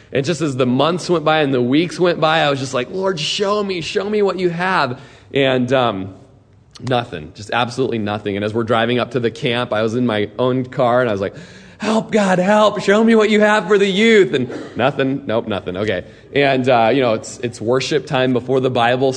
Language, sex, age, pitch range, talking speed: English, male, 20-39, 120-150 Hz, 235 wpm